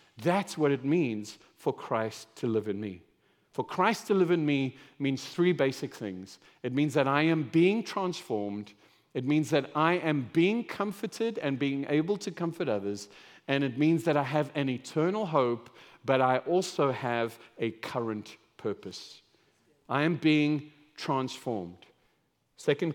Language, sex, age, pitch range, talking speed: English, male, 50-69, 140-195 Hz, 160 wpm